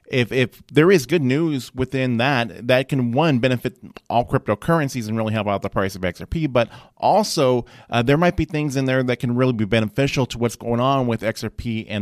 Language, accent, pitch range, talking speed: English, American, 110-135 Hz, 215 wpm